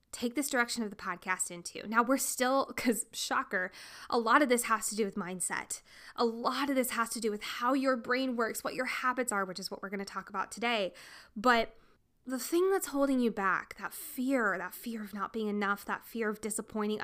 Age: 10-29